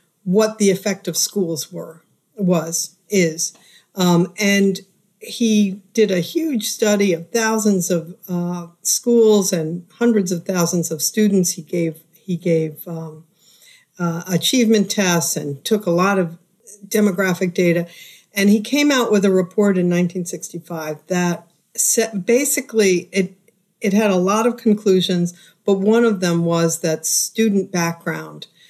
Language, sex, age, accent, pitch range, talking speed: English, female, 50-69, American, 170-205 Hz, 140 wpm